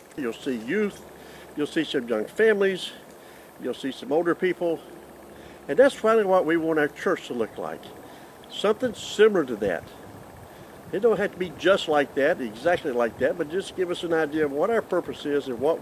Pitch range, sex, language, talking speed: 145-190 Hz, male, English, 195 wpm